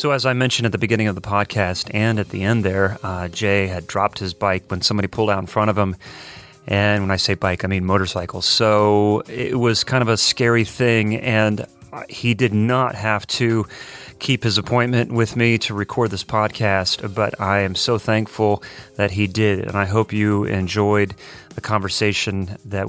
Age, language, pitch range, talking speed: 30-49, English, 95-120 Hz, 200 wpm